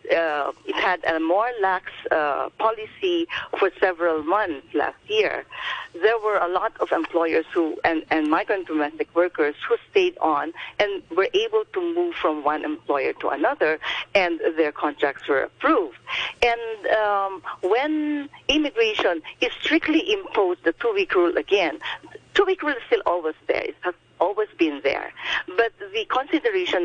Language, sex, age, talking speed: English, female, 50-69, 150 wpm